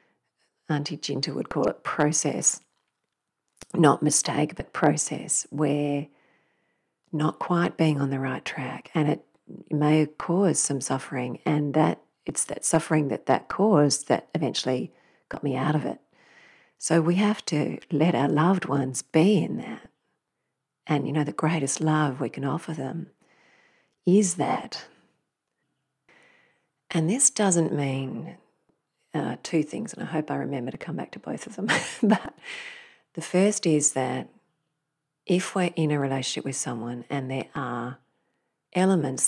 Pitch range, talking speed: 135-165 Hz, 150 wpm